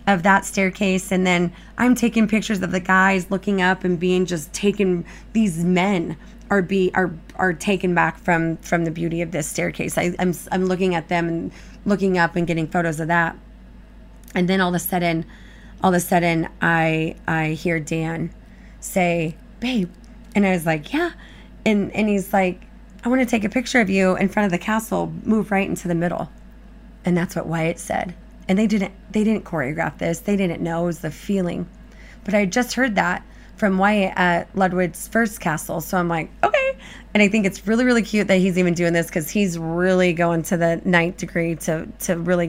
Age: 20-39